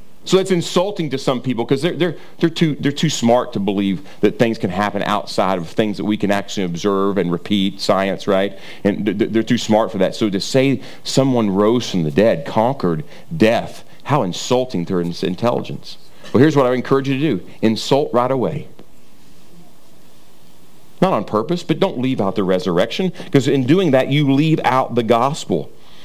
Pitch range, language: 110-145 Hz, English